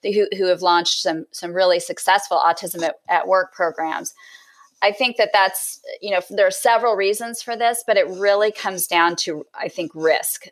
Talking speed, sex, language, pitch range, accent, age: 200 wpm, female, English, 170-205 Hz, American, 30-49